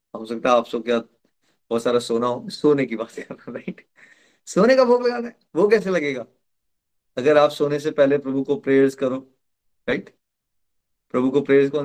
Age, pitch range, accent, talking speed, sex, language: 30-49, 130-165 Hz, native, 130 wpm, male, Hindi